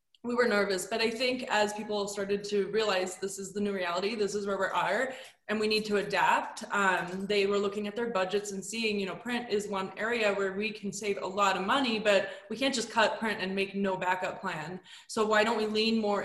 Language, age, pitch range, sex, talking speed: English, 20-39, 185-215 Hz, female, 245 wpm